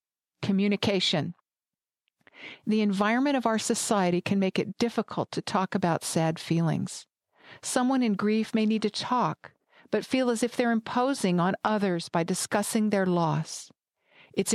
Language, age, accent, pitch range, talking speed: English, 50-69, American, 180-225 Hz, 145 wpm